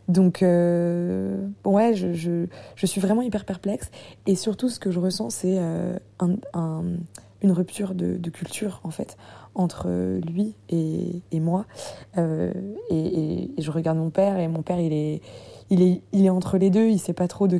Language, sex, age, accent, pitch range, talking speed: French, female, 20-39, French, 160-190 Hz, 200 wpm